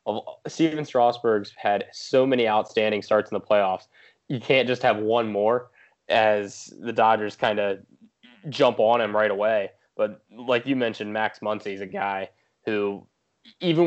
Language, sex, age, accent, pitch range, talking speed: English, male, 20-39, American, 105-120 Hz, 160 wpm